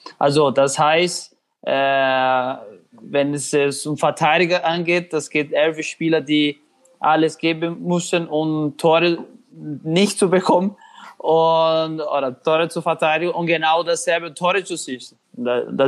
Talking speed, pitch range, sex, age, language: 130 wpm, 145-165 Hz, male, 20-39, German